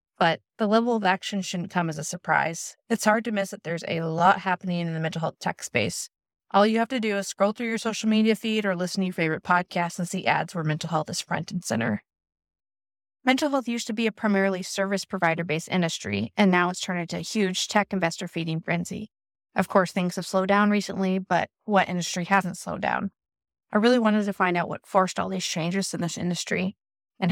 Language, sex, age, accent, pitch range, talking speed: English, female, 20-39, American, 175-215 Hz, 225 wpm